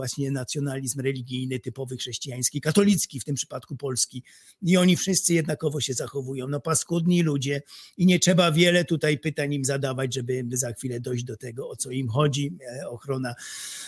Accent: native